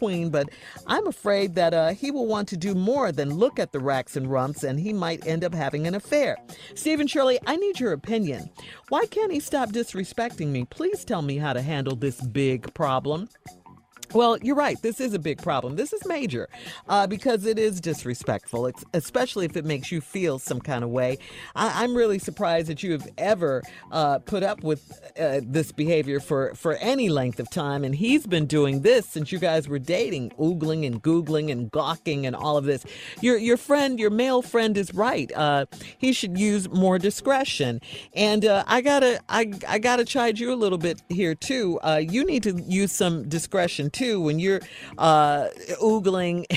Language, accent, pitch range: English, American, 150-225 Hz